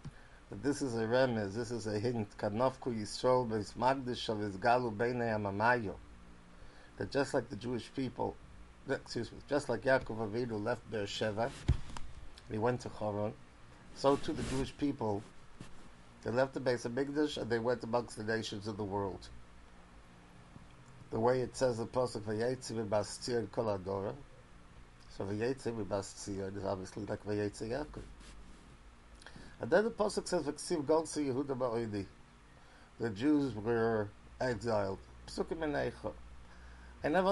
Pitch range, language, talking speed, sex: 90-125 Hz, English, 130 wpm, male